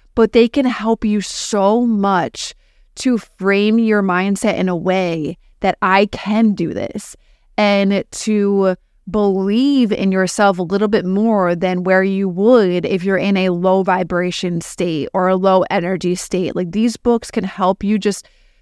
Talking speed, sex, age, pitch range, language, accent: 165 wpm, female, 20-39, 185-220 Hz, English, American